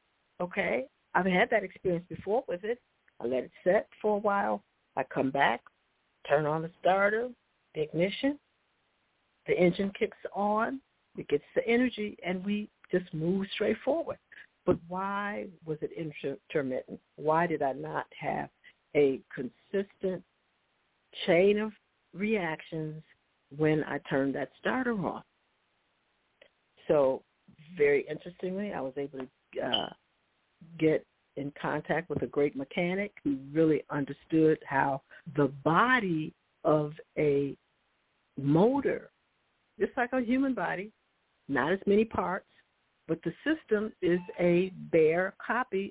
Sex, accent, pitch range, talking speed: female, American, 155-220 Hz, 130 wpm